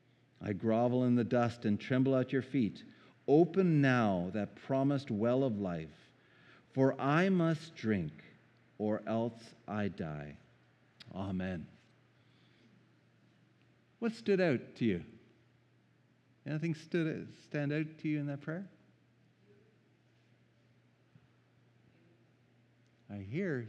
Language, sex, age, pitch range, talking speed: English, male, 50-69, 120-175 Hz, 105 wpm